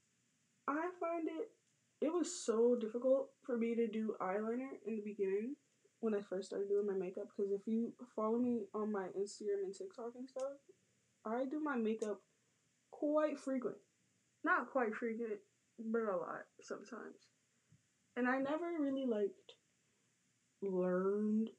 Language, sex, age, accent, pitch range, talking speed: English, female, 20-39, American, 185-245 Hz, 145 wpm